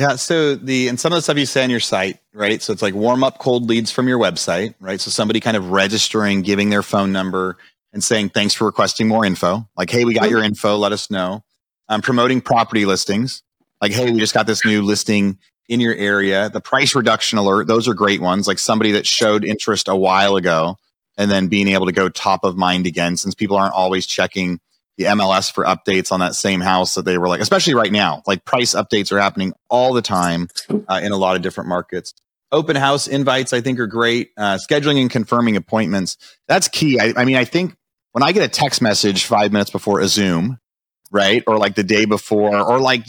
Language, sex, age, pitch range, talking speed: English, male, 30-49, 95-120 Hz, 230 wpm